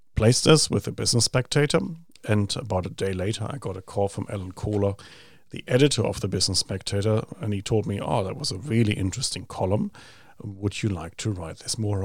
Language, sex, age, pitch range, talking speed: English, male, 40-59, 95-115 Hz, 210 wpm